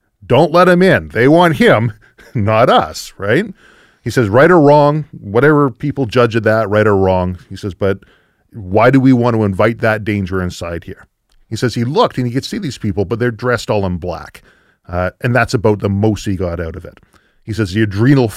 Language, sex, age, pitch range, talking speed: English, male, 40-59, 100-130 Hz, 220 wpm